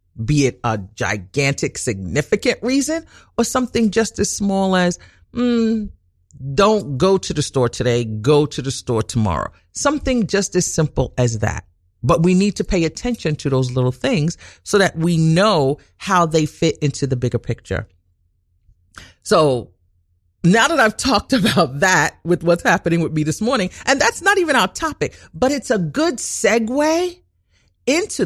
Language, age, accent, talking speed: English, 40-59, American, 165 wpm